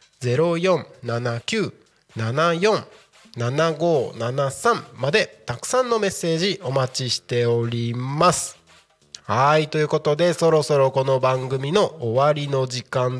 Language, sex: Japanese, male